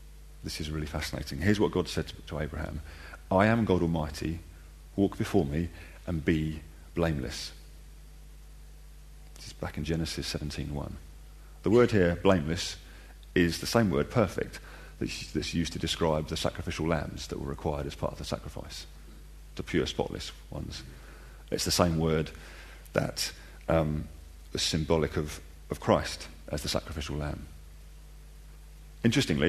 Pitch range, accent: 75-85 Hz, British